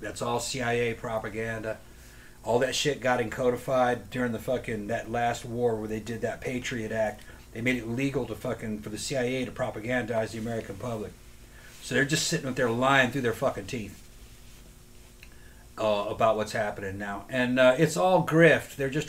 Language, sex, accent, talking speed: English, male, American, 180 wpm